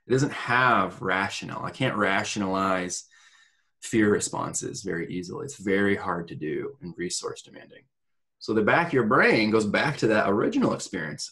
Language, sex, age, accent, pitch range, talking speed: English, male, 20-39, American, 100-140 Hz, 165 wpm